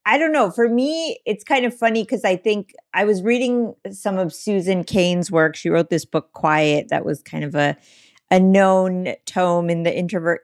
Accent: American